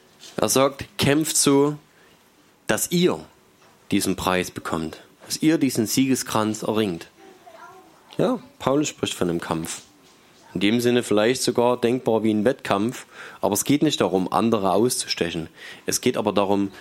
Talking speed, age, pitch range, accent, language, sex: 145 wpm, 20-39, 105-135 Hz, German, German, male